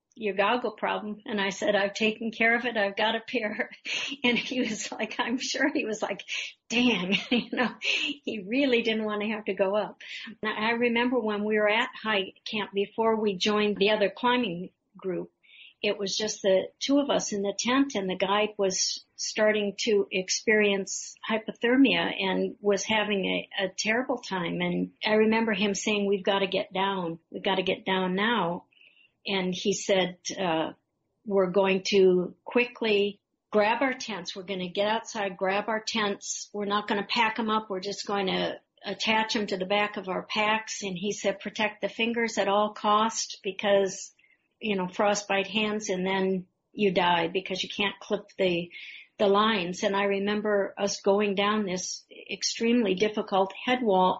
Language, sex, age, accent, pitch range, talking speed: English, female, 50-69, American, 195-220 Hz, 185 wpm